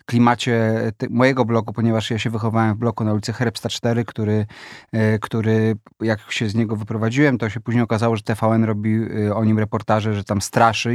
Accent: native